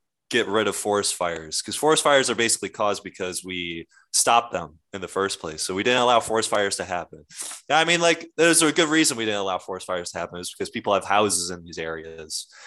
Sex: male